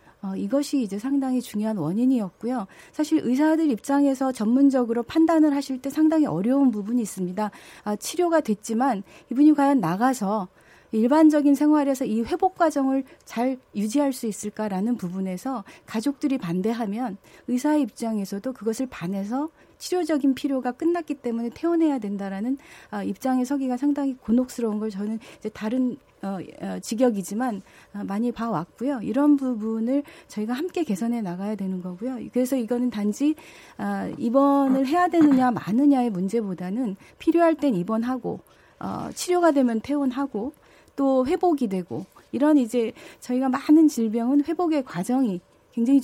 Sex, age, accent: female, 40-59, native